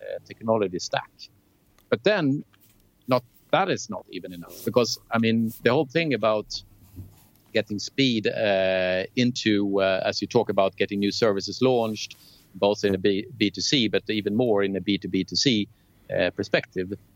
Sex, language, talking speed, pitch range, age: male, English, 145 wpm, 100-120 Hz, 50-69